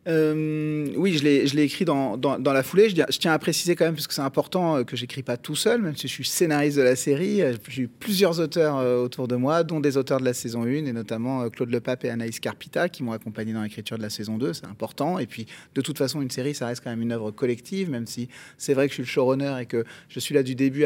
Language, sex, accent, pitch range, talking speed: French, male, French, 125-175 Hz, 280 wpm